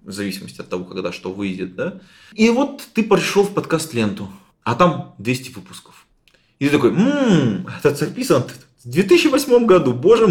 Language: Russian